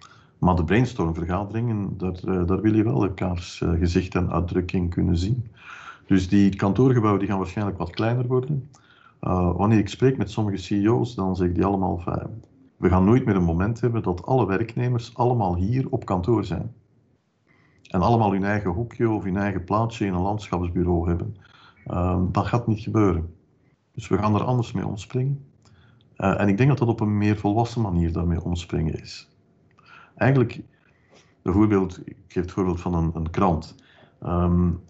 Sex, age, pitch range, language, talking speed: male, 50-69, 90-115 Hz, Dutch, 170 wpm